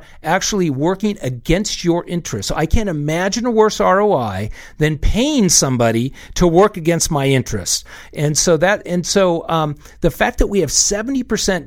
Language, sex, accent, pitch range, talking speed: English, male, American, 140-195 Hz, 170 wpm